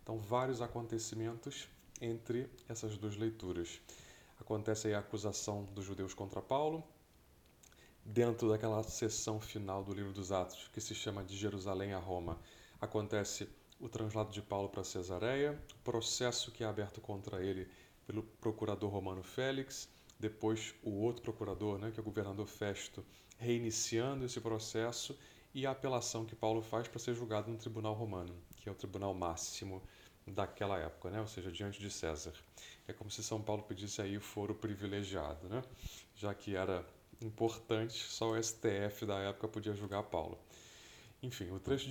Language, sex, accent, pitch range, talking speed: Portuguese, male, Brazilian, 100-115 Hz, 160 wpm